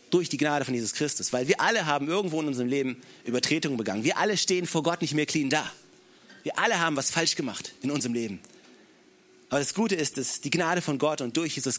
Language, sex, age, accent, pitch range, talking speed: German, male, 40-59, German, 145-210 Hz, 235 wpm